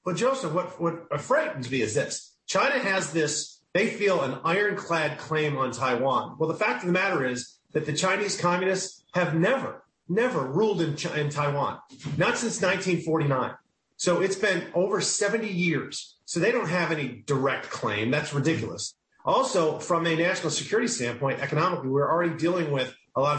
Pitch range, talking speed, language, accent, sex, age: 135-175 Hz, 175 wpm, English, American, male, 40-59